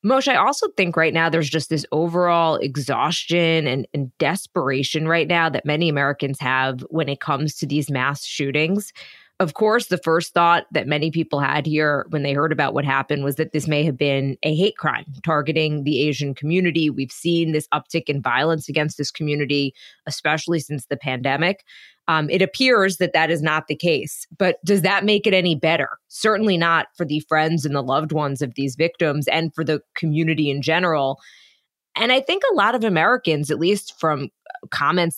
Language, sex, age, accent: English, female, 20-39, American